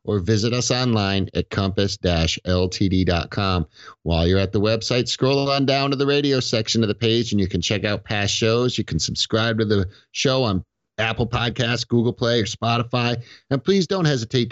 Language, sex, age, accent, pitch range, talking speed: English, male, 50-69, American, 95-120 Hz, 185 wpm